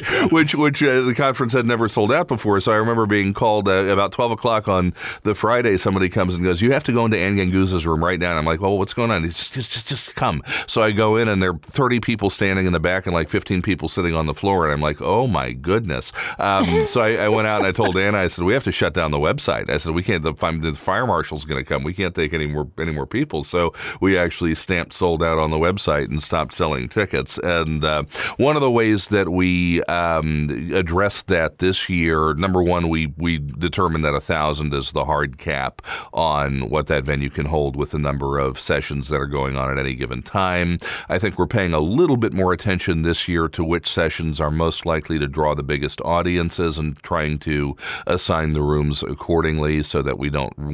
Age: 40-59